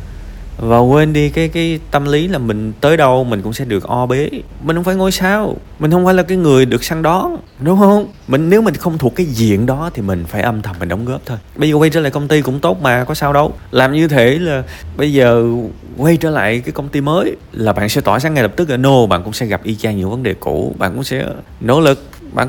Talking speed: 275 wpm